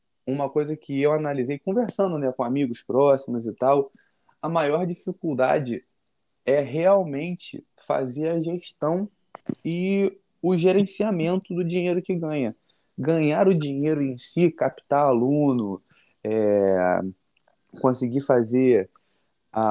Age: 20-39